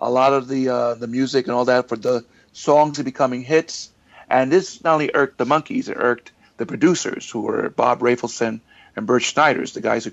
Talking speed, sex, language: 215 wpm, male, English